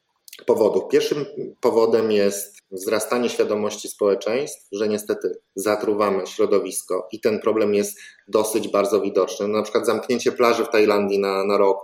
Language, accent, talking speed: Polish, native, 135 wpm